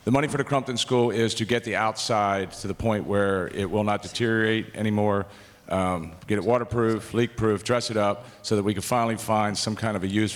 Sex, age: male, 40-59